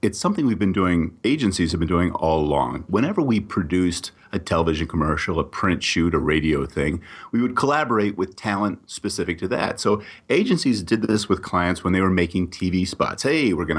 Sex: male